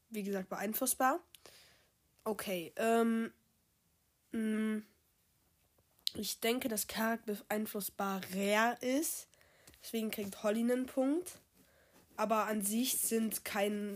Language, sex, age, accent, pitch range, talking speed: German, female, 20-39, German, 195-230 Hz, 100 wpm